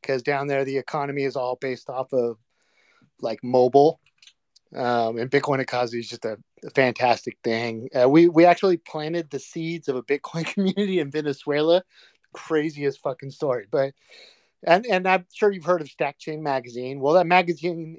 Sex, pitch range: male, 135-165 Hz